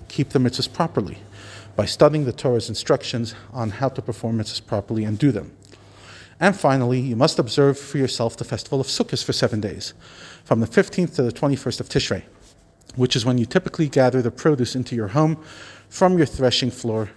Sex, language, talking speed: male, English, 190 wpm